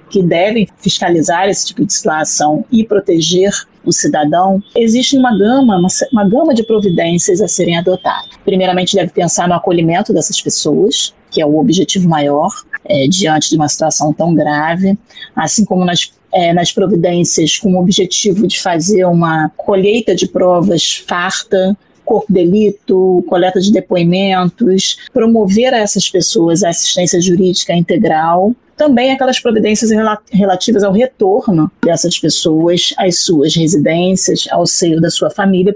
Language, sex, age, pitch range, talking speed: Portuguese, female, 30-49, 175-215 Hz, 145 wpm